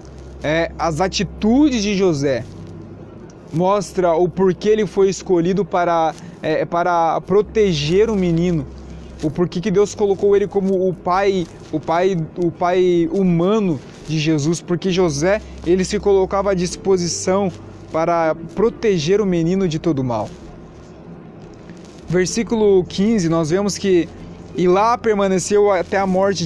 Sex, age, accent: male, 20-39, Brazilian